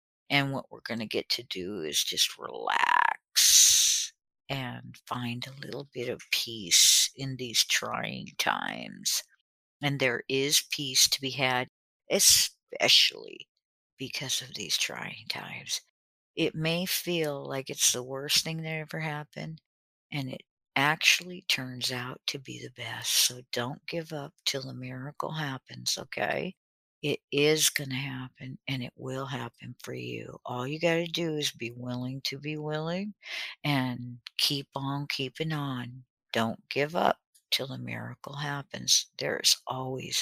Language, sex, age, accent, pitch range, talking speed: English, female, 50-69, American, 125-150 Hz, 145 wpm